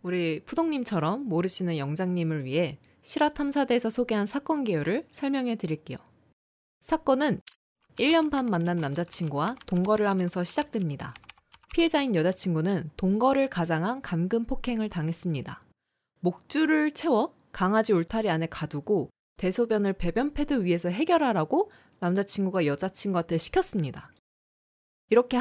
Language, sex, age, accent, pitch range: Korean, female, 20-39, native, 170-260 Hz